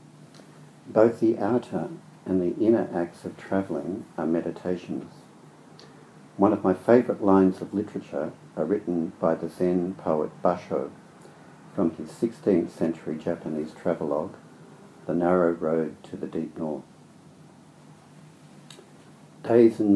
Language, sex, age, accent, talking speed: English, male, 60-79, Australian, 120 wpm